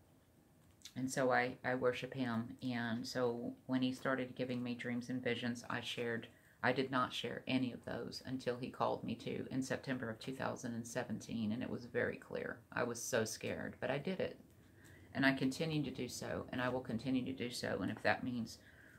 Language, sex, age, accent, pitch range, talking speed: English, female, 50-69, American, 110-130 Hz, 200 wpm